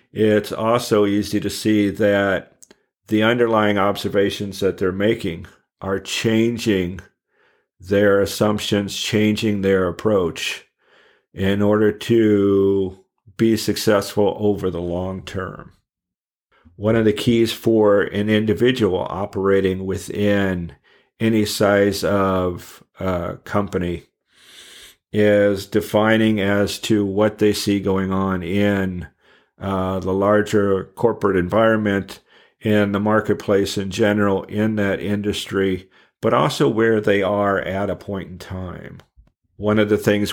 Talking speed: 120 wpm